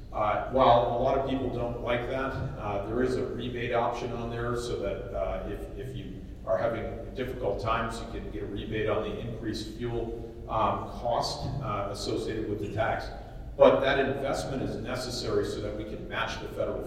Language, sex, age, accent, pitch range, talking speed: English, male, 40-59, American, 105-125 Hz, 195 wpm